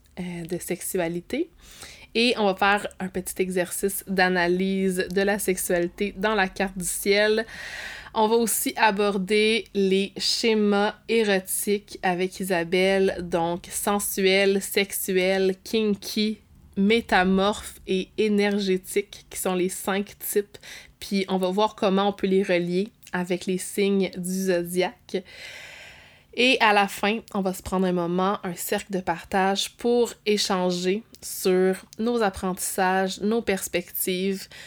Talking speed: 130 wpm